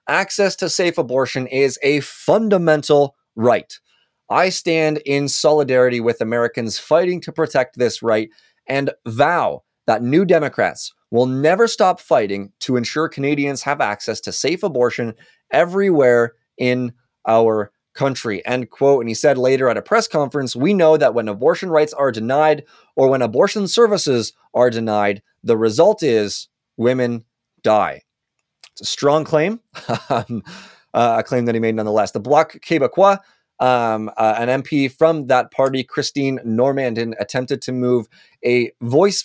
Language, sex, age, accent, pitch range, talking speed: English, male, 20-39, American, 115-150 Hz, 145 wpm